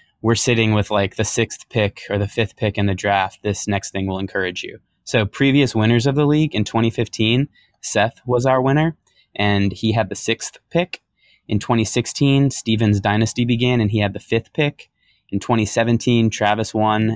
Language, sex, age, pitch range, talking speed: English, male, 20-39, 100-115 Hz, 185 wpm